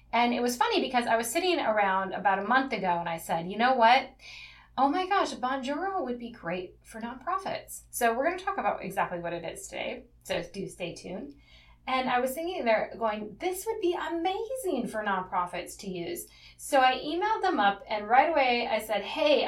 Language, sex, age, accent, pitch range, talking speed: English, female, 20-39, American, 195-270 Hz, 210 wpm